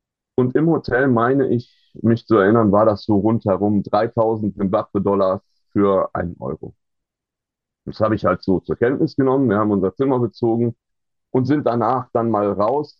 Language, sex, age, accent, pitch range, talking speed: German, male, 40-59, German, 100-120 Hz, 165 wpm